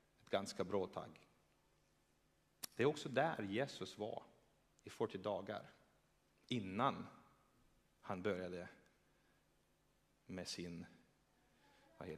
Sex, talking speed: male, 90 wpm